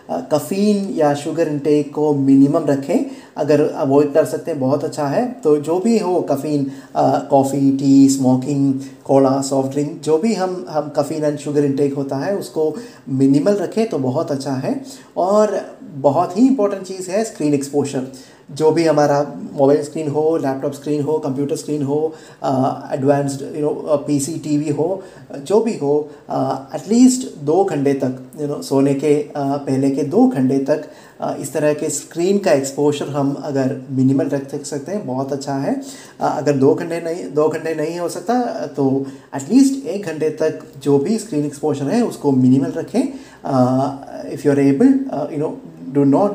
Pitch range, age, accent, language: 140-160 Hz, 20-39, native, Hindi